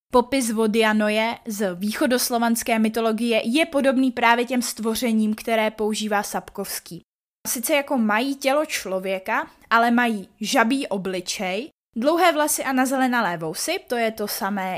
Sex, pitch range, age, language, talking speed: female, 210-255 Hz, 20-39, Czech, 130 wpm